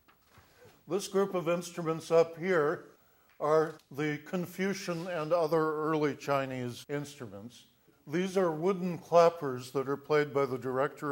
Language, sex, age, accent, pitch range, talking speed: English, male, 60-79, American, 125-155 Hz, 130 wpm